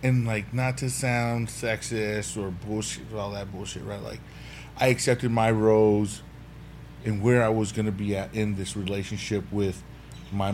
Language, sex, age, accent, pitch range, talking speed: English, male, 20-39, American, 100-115 Hz, 170 wpm